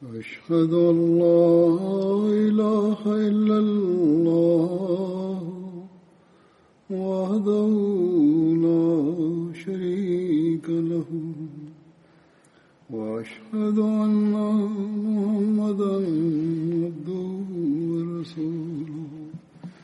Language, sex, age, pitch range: Malayalam, male, 60-79, 160-205 Hz